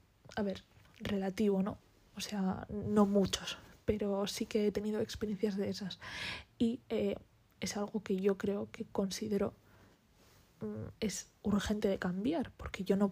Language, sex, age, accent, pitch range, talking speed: Spanish, female, 20-39, Spanish, 195-225 Hz, 150 wpm